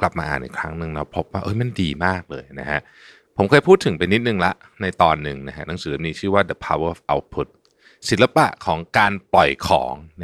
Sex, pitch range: male, 75-105 Hz